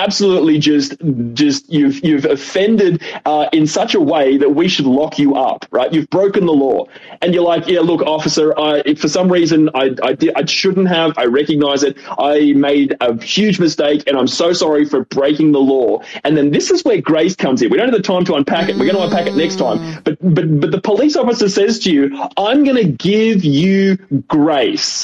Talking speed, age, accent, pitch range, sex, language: 220 wpm, 20-39, Australian, 150-210 Hz, male, English